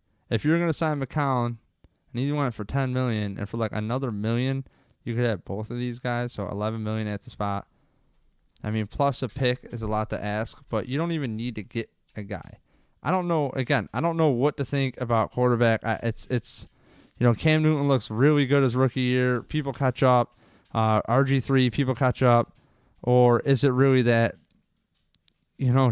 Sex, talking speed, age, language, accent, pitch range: male, 200 wpm, 20-39, English, American, 110-130 Hz